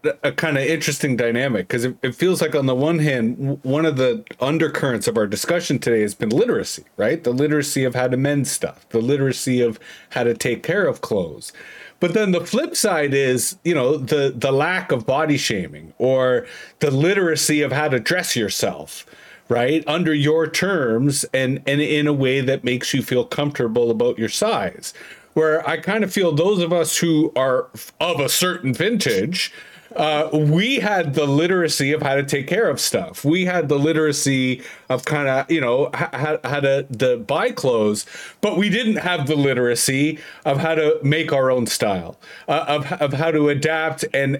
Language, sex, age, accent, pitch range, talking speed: English, male, 30-49, American, 130-175 Hz, 190 wpm